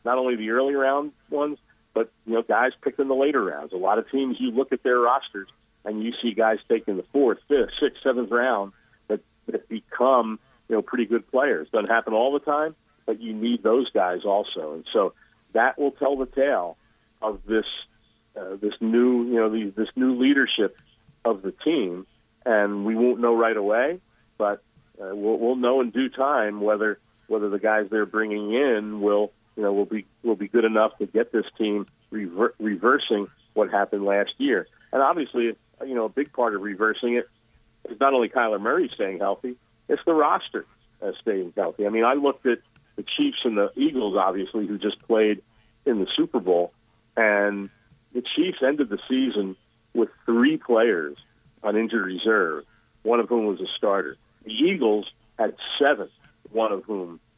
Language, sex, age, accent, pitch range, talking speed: English, male, 50-69, American, 105-125 Hz, 190 wpm